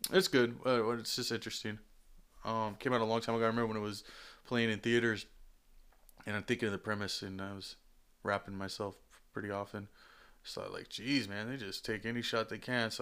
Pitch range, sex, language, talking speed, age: 105-140 Hz, male, English, 215 wpm, 20-39